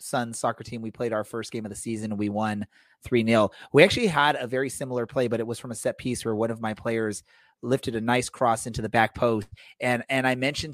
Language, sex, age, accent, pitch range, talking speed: English, male, 30-49, American, 110-130 Hz, 250 wpm